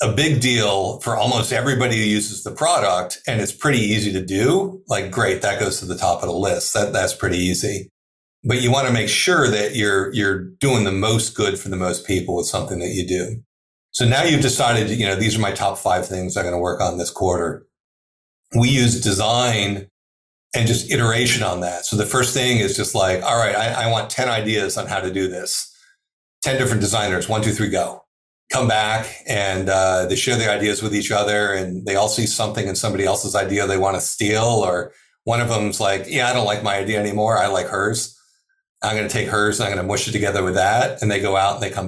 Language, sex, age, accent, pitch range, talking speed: English, male, 40-59, American, 95-120 Hz, 235 wpm